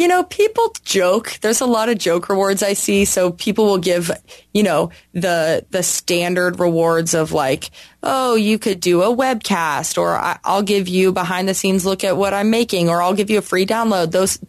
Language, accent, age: English, American, 20-39